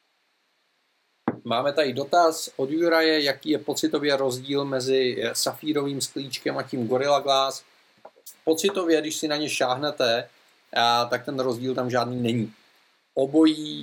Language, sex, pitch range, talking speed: Czech, male, 125-145 Hz, 125 wpm